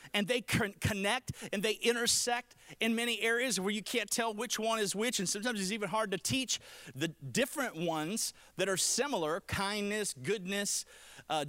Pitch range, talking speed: 175-245 Hz, 170 wpm